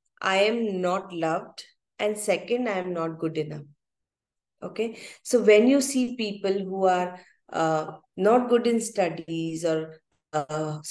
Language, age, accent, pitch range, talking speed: English, 30-49, Indian, 175-235 Hz, 145 wpm